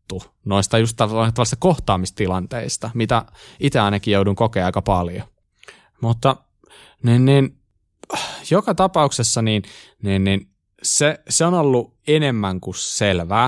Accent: native